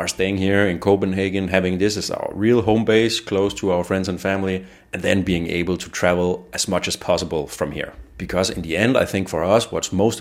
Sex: male